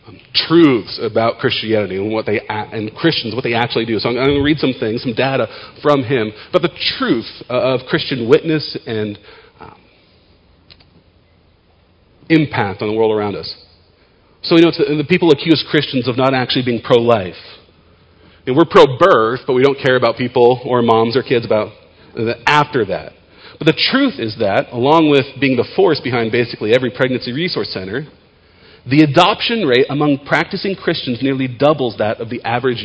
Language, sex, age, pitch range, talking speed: English, male, 40-59, 105-145 Hz, 175 wpm